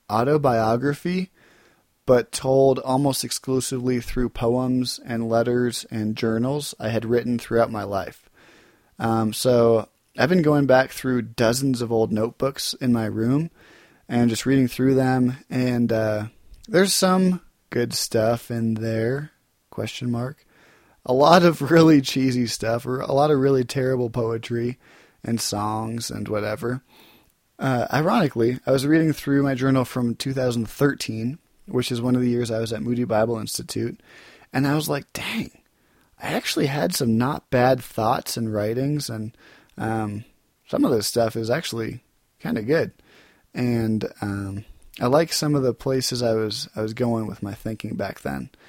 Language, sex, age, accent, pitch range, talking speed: English, male, 20-39, American, 115-135 Hz, 160 wpm